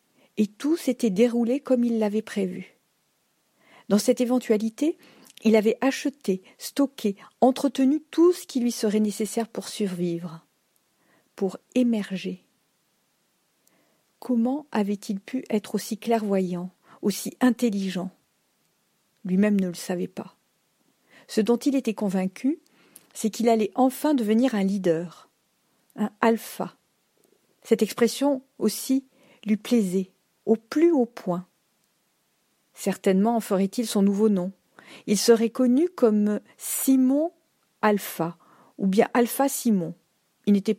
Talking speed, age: 120 wpm, 50-69